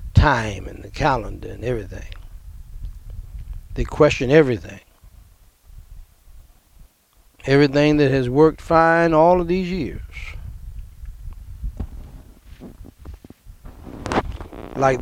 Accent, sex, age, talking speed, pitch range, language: American, male, 60-79, 70 wpm, 80-135 Hz, English